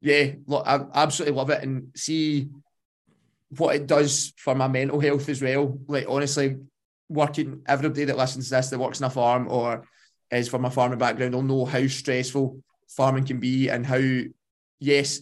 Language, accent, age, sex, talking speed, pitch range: English, British, 20-39, male, 180 wpm, 125-140 Hz